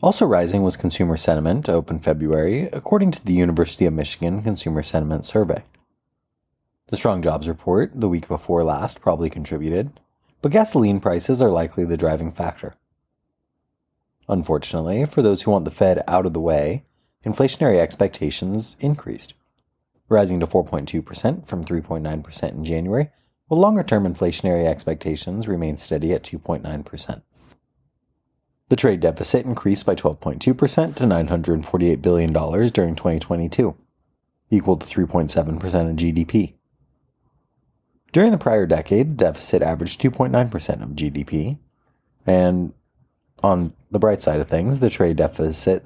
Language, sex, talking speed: English, male, 130 wpm